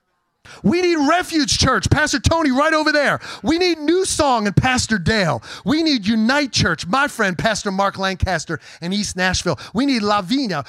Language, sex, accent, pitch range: English, male, American, 180-250 Hz